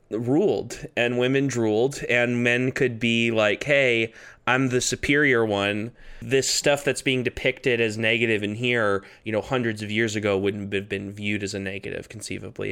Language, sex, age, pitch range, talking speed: English, male, 20-39, 100-120 Hz, 175 wpm